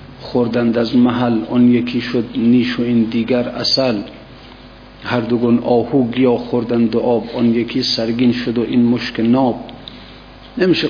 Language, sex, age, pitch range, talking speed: Persian, male, 50-69, 120-140 Hz, 145 wpm